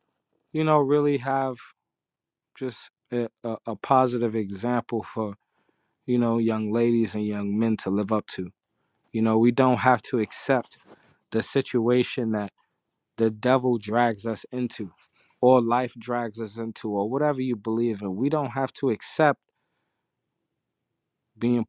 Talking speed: 145 wpm